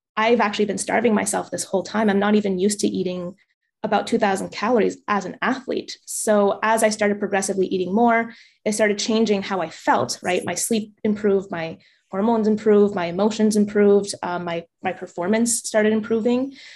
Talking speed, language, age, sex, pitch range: 175 wpm, English, 20-39, female, 185-220 Hz